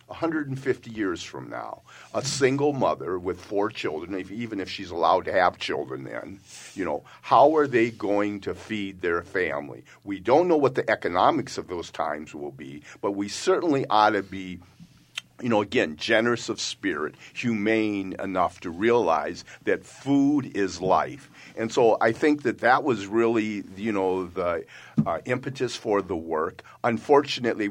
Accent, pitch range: American, 90-115 Hz